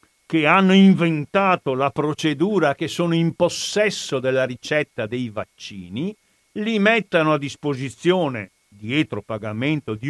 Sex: male